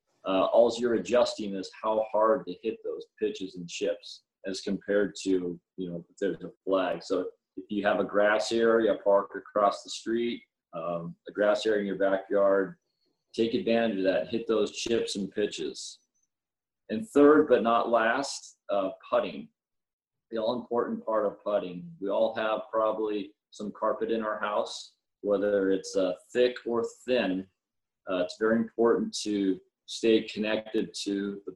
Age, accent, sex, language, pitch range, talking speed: 40-59, American, male, English, 100-120 Hz, 160 wpm